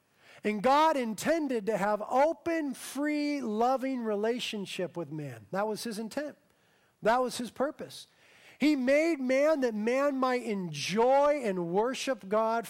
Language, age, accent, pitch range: English, 40-59, American, 195-275 Hz